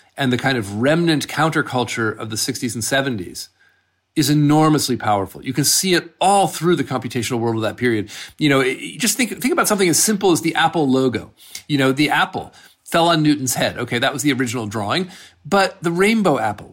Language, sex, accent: English, male, American